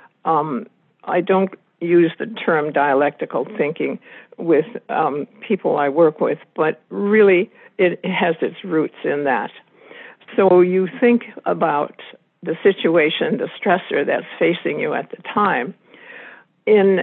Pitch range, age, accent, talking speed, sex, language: 160-200 Hz, 60-79, American, 130 wpm, female, English